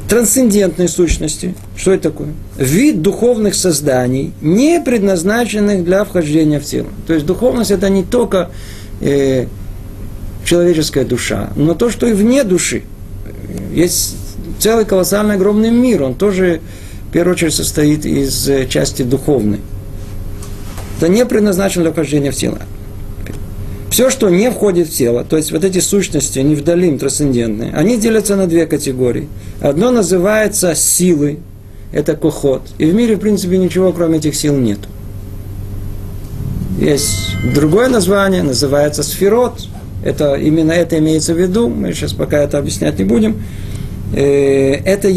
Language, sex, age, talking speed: Russian, male, 50-69, 135 wpm